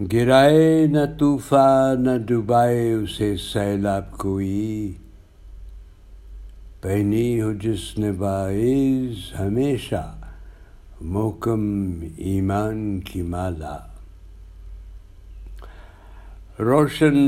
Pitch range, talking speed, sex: 90-120 Hz, 65 wpm, male